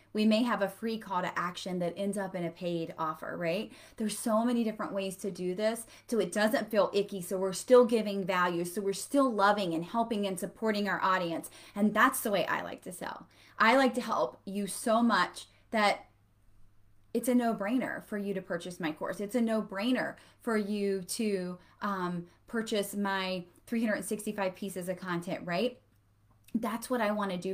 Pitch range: 190-230 Hz